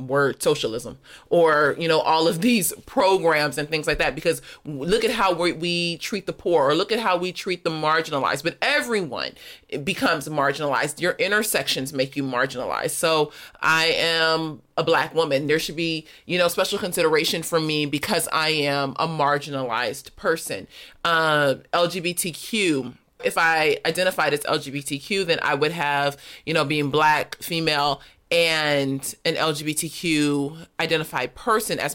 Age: 30-49